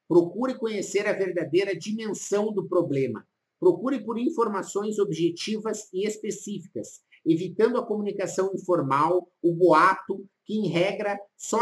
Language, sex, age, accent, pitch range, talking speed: Portuguese, male, 50-69, Brazilian, 170-215 Hz, 120 wpm